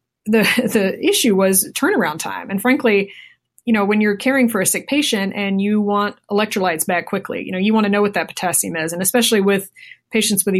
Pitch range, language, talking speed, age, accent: 185-210 Hz, English, 215 wpm, 20-39, American